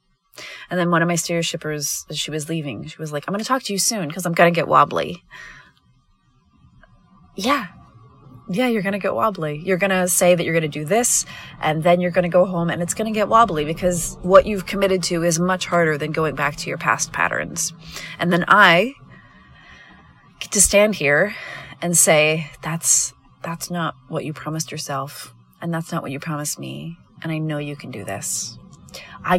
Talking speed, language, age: 205 wpm, English, 30-49